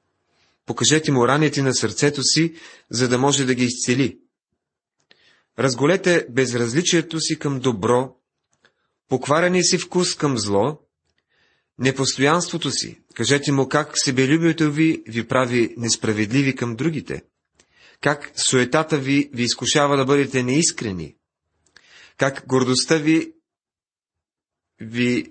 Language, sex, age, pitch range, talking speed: Bulgarian, male, 30-49, 125-160 Hz, 110 wpm